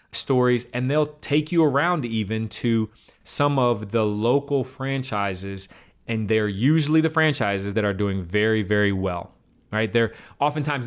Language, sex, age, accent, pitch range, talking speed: English, male, 30-49, American, 115-140 Hz, 150 wpm